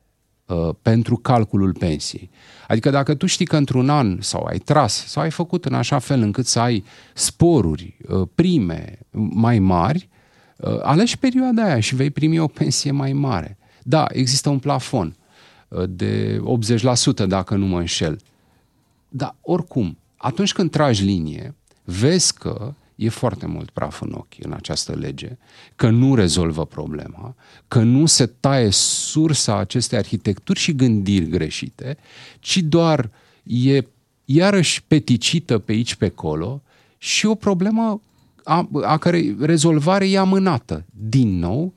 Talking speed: 140 wpm